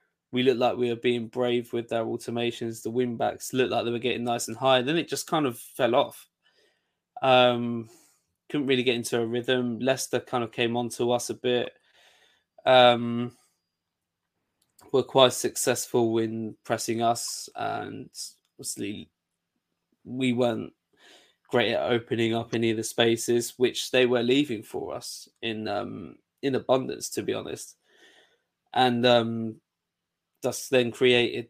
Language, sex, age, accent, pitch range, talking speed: English, male, 20-39, British, 115-125 Hz, 155 wpm